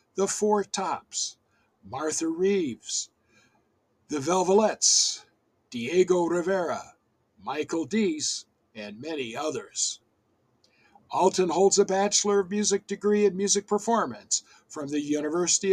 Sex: male